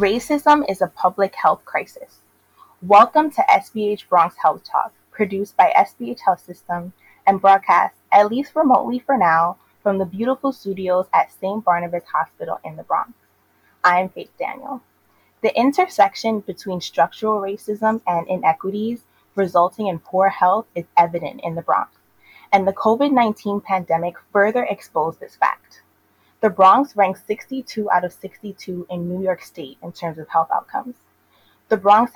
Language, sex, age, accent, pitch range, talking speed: English, female, 20-39, American, 180-230 Hz, 150 wpm